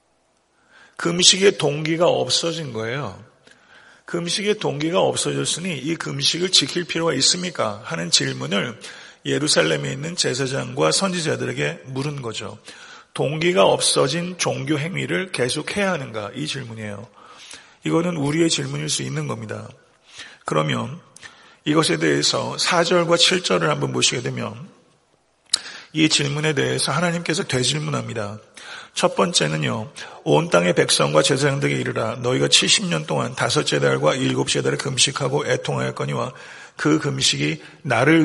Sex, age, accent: male, 40-59, native